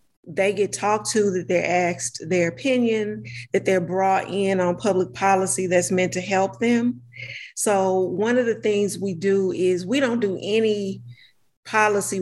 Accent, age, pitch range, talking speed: American, 40-59, 180-205 Hz, 165 wpm